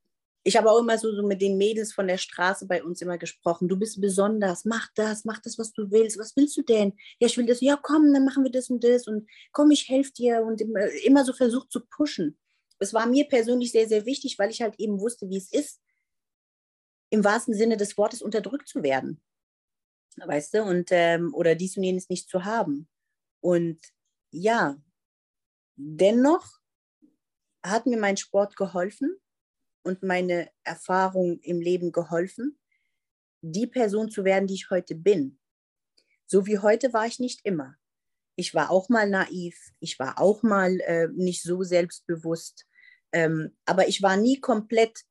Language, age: German, 30-49